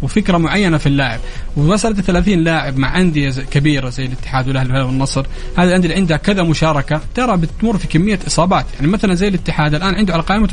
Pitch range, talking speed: 140-190 Hz, 180 wpm